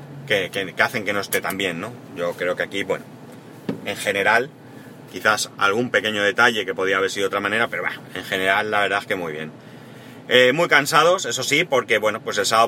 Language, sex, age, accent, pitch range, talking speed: Spanish, male, 30-49, Spanish, 105-135 Hz, 225 wpm